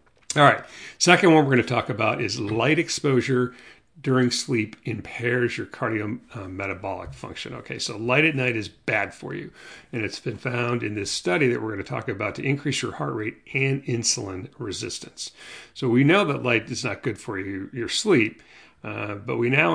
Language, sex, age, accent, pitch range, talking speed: English, male, 50-69, American, 105-130 Hz, 195 wpm